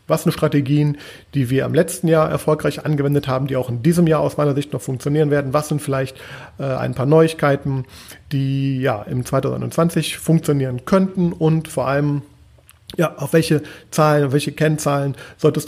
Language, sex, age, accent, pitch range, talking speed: German, male, 40-59, German, 140-155 Hz, 170 wpm